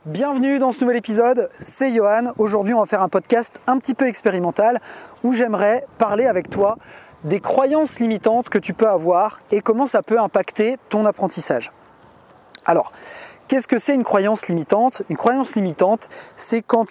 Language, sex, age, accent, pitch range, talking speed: French, male, 30-49, French, 200-245 Hz, 170 wpm